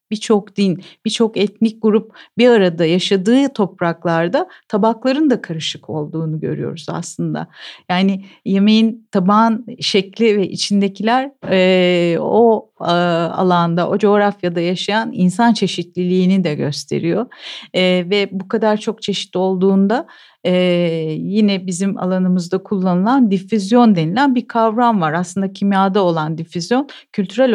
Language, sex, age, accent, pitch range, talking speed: Turkish, female, 50-69, native, 175-220 Hz, 110 wpm